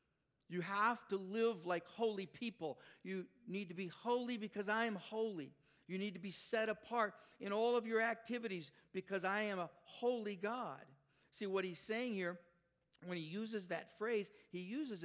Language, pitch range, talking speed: English, 170-215 Hz, 180 wpm